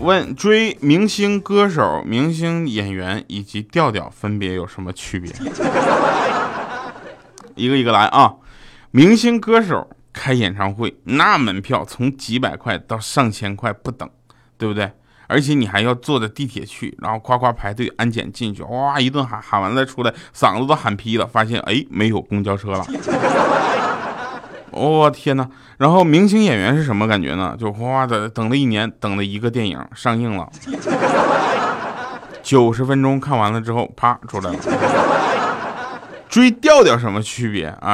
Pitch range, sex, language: 105-140 Hz, male, Chinese